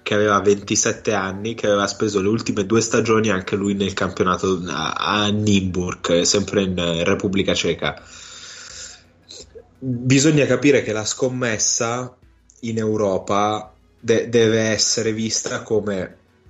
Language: Italian